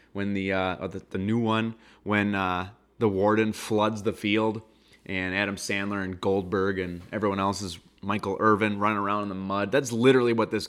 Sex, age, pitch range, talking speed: male, 20-39, 95-115 Hz, 190 wpm